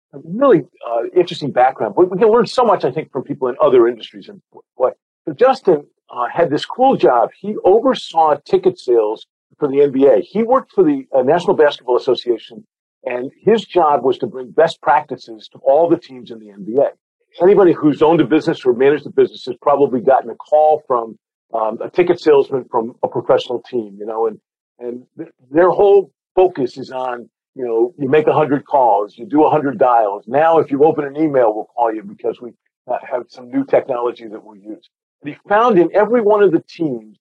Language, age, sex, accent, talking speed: English, 50-69, male, American, 210 wpm